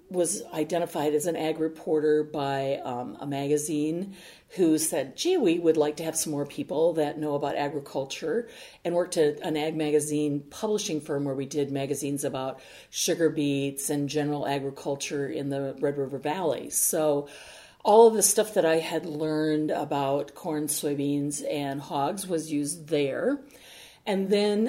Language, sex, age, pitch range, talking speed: English, female, 50-69, 150-195 Hz, 165 wpm